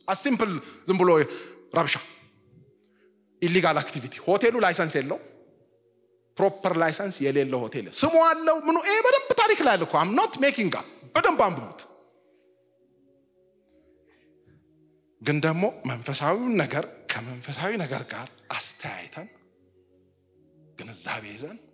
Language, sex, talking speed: English, male, 60 wpm